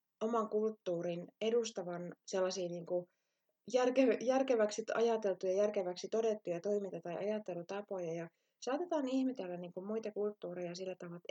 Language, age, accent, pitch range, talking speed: Finnish, 20-39, native, 175-210 Hz, 100 wpm